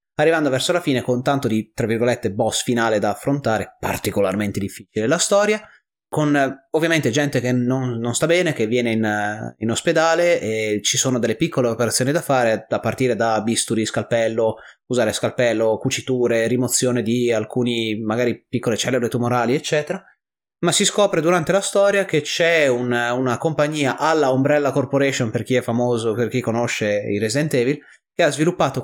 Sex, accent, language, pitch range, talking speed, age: male, native, Italian, 120-160 Hz, 170 wpm, 30-49